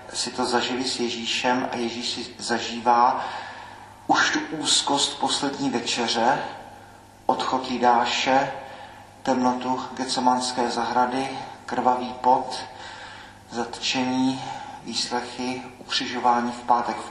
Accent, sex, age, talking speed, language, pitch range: native, male, 40-59, 95 wpm, Czech, 115-125 Hz